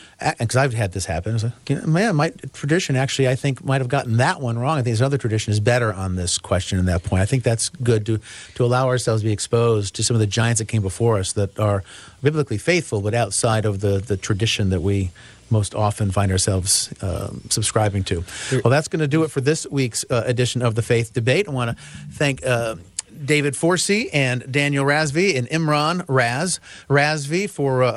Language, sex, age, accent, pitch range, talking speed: English, male, 40-59, American, 105-140 Hz, 220 wpm